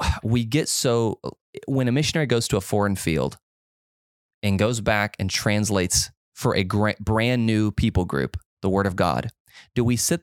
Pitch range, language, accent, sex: 100-120 Hz, English, American, male